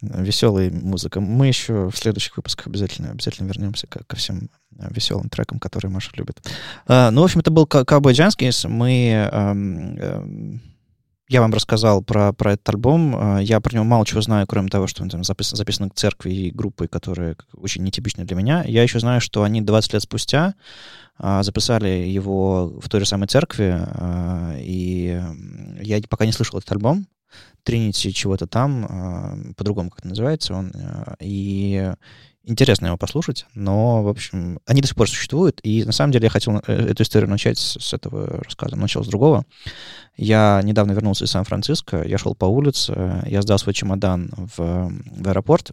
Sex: male